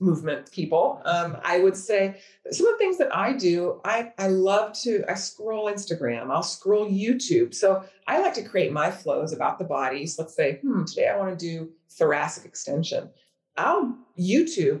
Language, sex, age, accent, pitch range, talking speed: English, female, 40-59, American, 155-220 Hz, 185 wpm